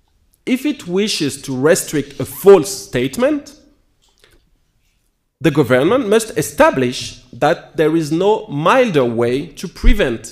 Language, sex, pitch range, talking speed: English, male, 125-195 Hz, 115 wpm